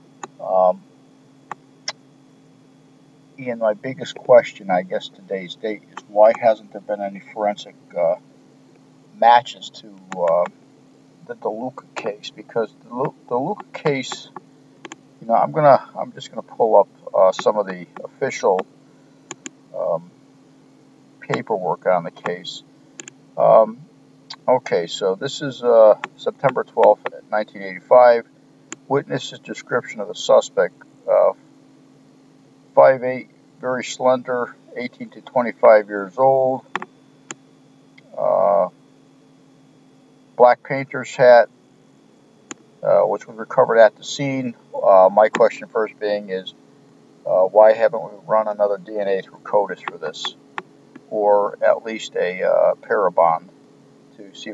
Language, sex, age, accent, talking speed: English, male, 50-69, American, 115 wpm